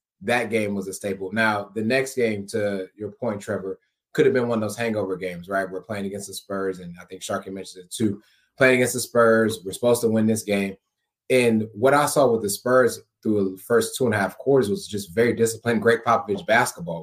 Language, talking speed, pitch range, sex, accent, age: English, 235 wpm, 100-115 Hz, male, American, 20-39